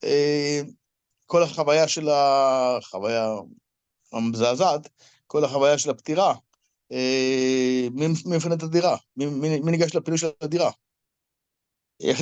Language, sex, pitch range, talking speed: Hebrew, male, 130-165 Hz, 110 wpm